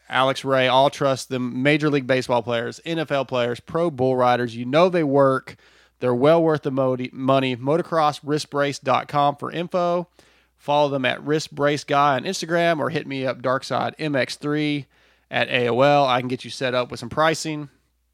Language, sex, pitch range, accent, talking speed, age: English, male, 130-160 Hz, American, 160 wpm, 30-49